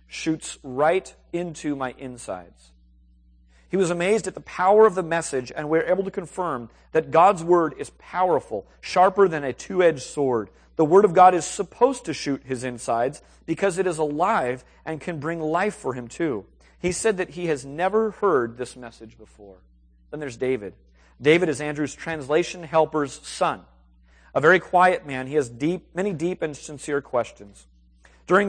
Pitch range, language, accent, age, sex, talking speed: 120-175 Hz, English, American, 40-59, male, 175 wpm